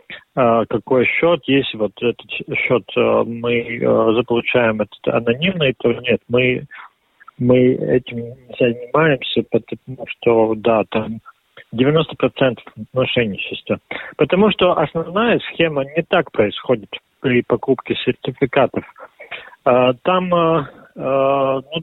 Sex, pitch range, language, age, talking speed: male, 120-160 Hz, Russian, 40-59, 100 wpm